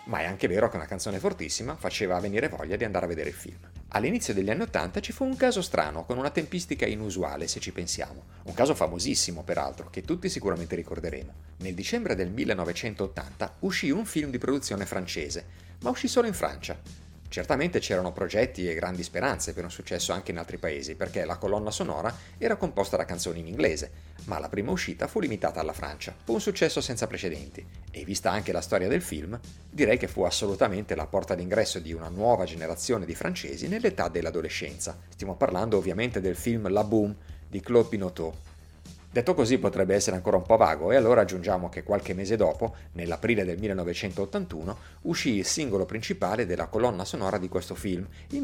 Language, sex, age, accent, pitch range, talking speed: Italian, male, 40-59, native, 85-110 Hz, 190 wpm